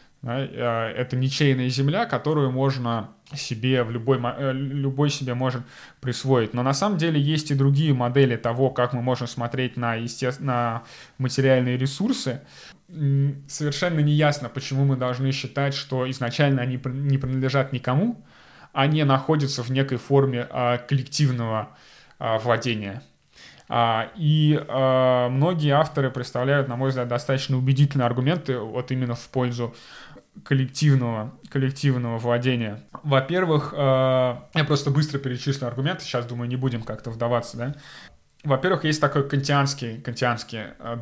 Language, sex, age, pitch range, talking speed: Russian, male, 20-39, 120-140 Hz, 125 wpm